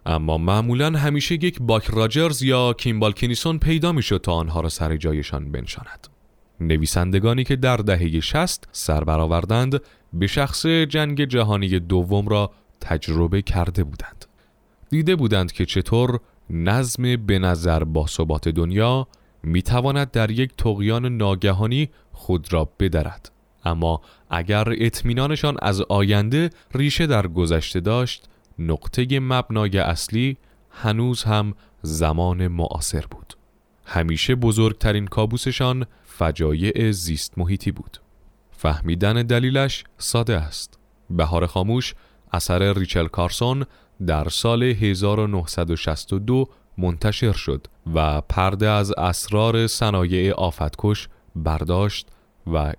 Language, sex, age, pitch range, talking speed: Persian, male, 30-49, 85-115 Hz, 110 wpm